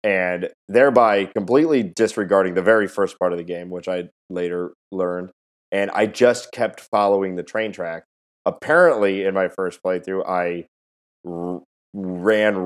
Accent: American